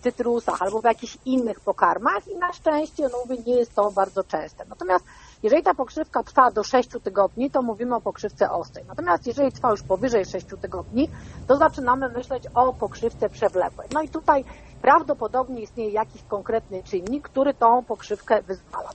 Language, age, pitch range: Polish, 40-59, 200-245 Hz